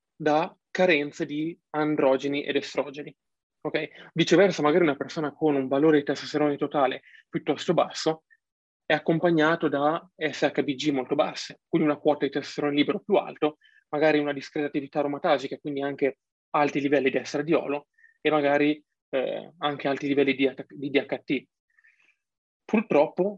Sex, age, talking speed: male, 20-39, 135 wpm